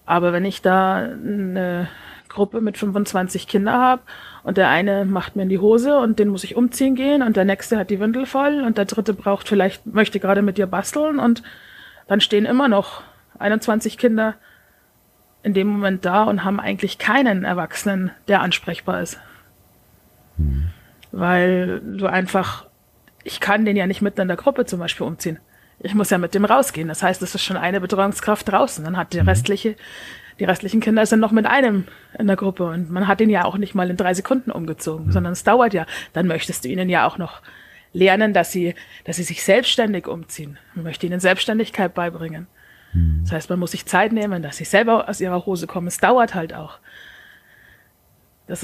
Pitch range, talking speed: 175-220 Hz, 195 wpm